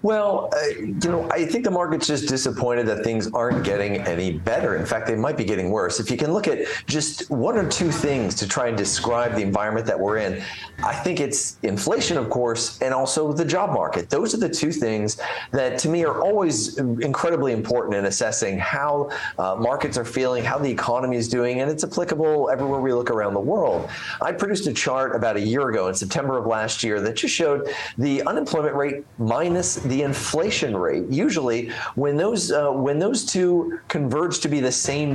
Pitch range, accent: 120-155 Hz, American